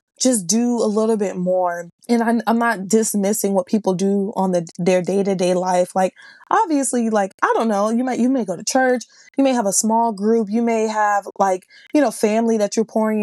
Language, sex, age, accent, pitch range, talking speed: English, female, 20-39, American, 190-230 Hz, 215 wpm